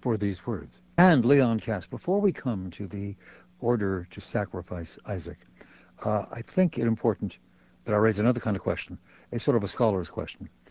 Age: 60-79